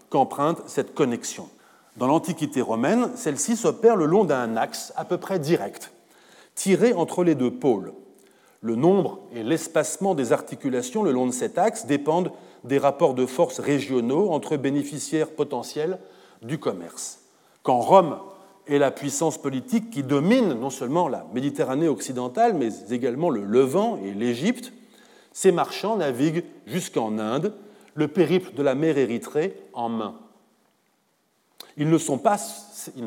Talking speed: 145 wpm